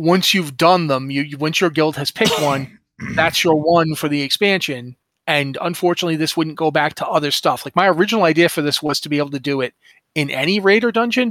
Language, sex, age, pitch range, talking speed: English, male, 30-49, 145-205 Hz, 235 wpm